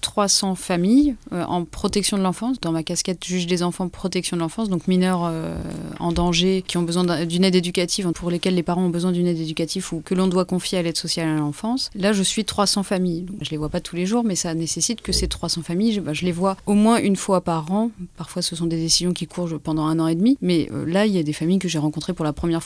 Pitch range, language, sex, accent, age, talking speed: 165-190 Hz, French, female, French, 20-39, 275 wpm